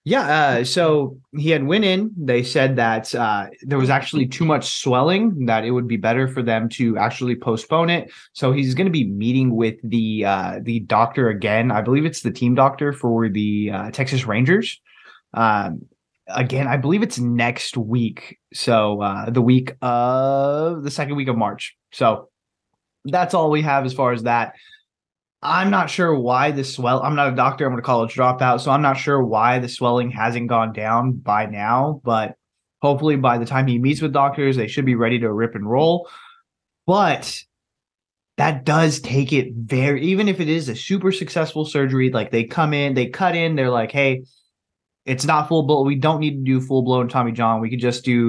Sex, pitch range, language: male, 115-145 Hz, English